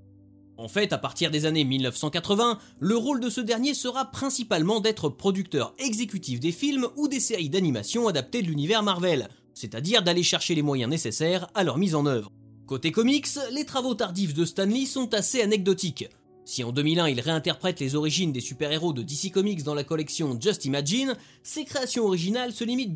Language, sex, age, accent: French, male, 30-49, French